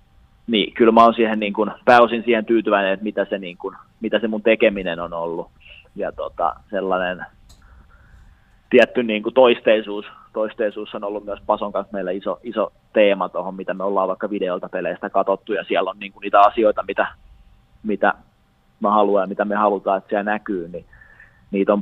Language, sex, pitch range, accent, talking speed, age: Finnish, male, 100-120 Hz, native, 185 wpm, 20-39